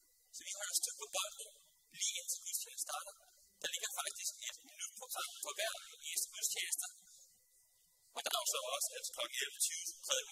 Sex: male